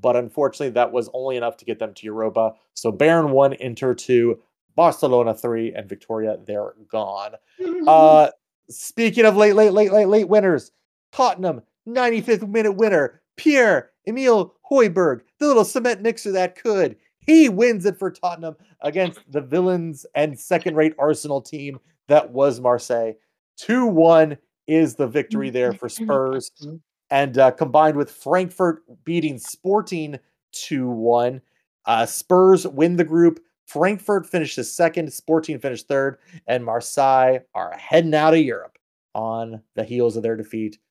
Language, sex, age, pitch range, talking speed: English, male, 30-49, 125-185 Hz, 140 wpm